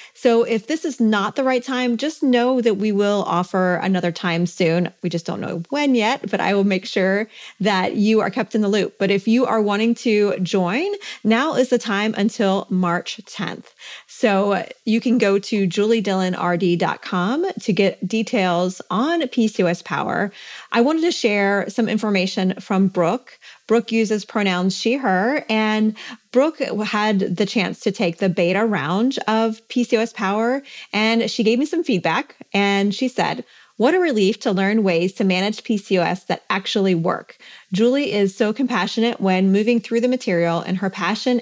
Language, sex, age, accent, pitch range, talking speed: English, female, 30-49, American, 190-235 Hz, 175 wpm